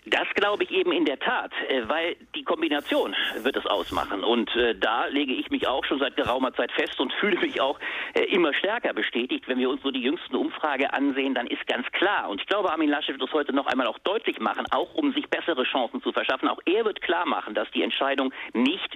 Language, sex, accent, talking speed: German, male, German, 230 wpm